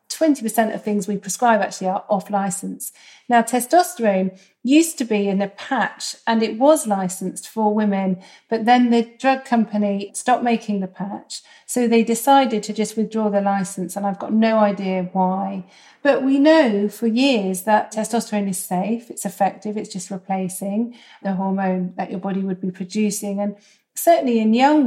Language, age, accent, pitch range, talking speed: English, 40-59, British, 195-240 Hz, 170 wpm